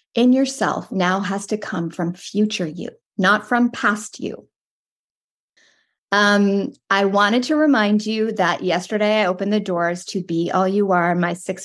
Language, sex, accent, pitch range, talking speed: English, female, American, 175-210 Hz, 165 wpm